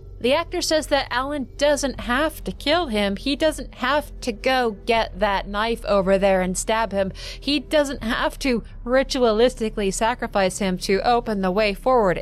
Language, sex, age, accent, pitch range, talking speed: English, female, 30-49, American, 190-260 Hz, 170 wpm